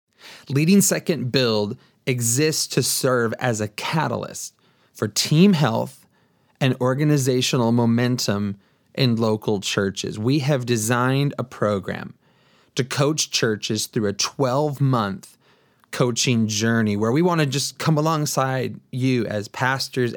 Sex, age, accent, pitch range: male, 30-49, American, 115-140 Hz